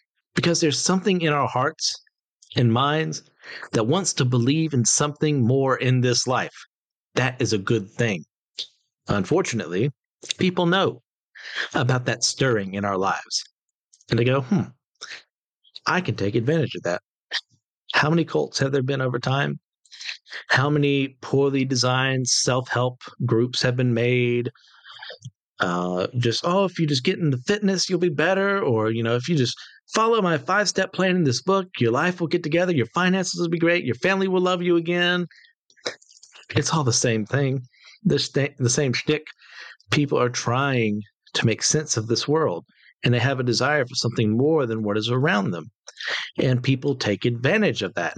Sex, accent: male, American